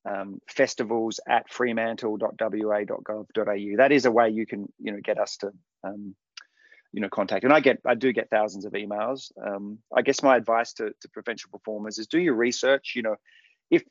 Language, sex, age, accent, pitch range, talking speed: English, male, 30-49, Australian, 105-145 Hz, 190 wpm